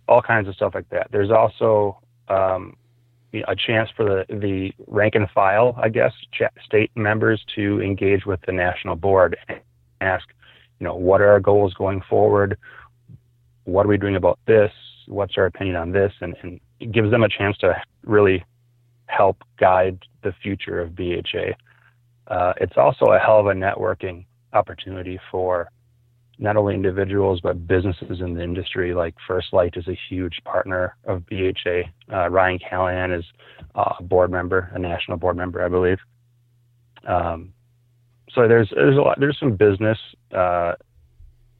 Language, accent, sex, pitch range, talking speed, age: English, American, male, 90-115 Hz, 165 wpm, 30-49